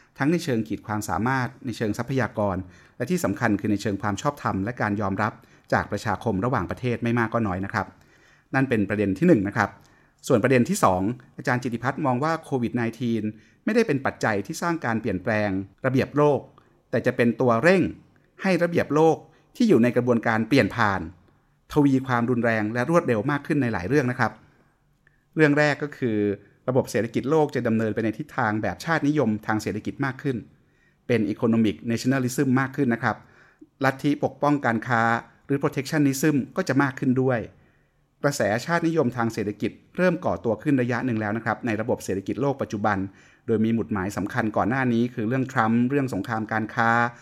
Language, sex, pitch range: Thai, male, 105-140 Hz